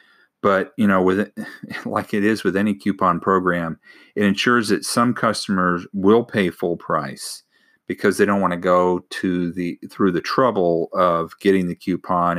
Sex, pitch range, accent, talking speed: male, 90-105 Hz, American, 170 wpm